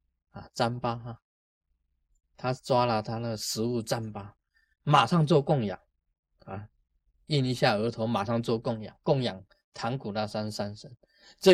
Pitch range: 100-155 Hz